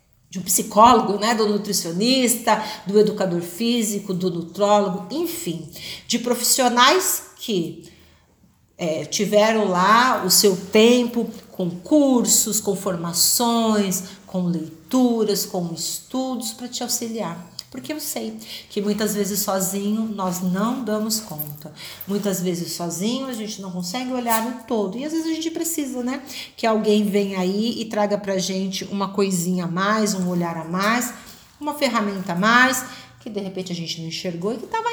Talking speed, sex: 155 wpm, female